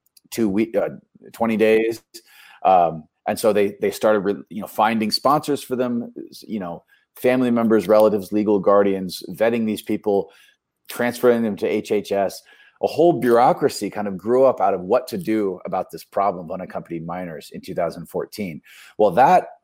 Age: 30-49